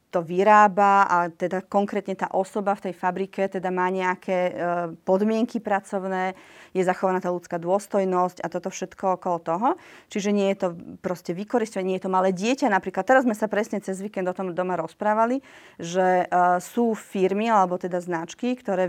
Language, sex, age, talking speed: Slovak, female, 30-49, 180 wpm